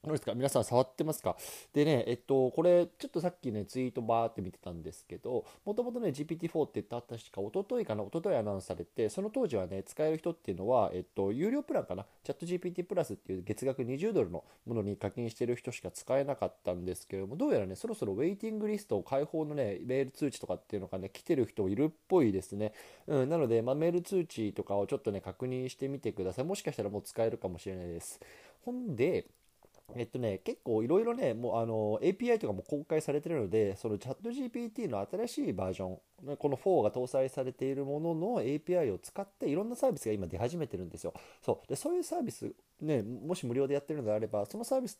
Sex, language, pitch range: male, Japanese, 110-180 Hz